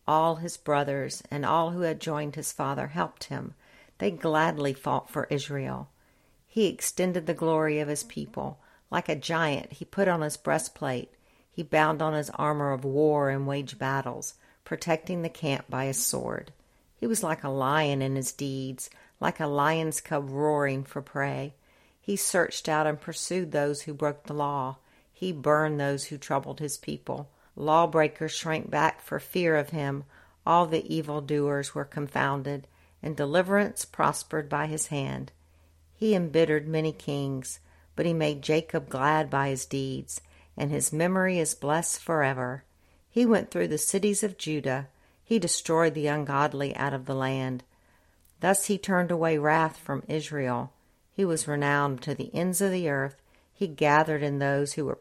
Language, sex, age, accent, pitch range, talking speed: English, female, 60-79, American, 140-160 Hz, 170 wpm